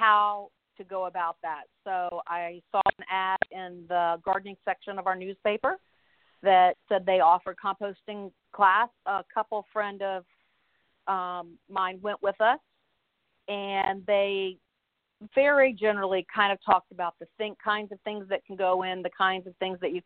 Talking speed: 165 wpm